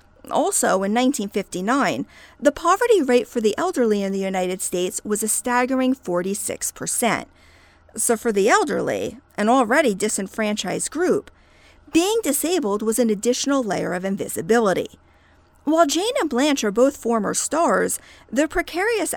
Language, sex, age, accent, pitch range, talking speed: English, female, 50-69, American, 210-305 Hz, 135 wpm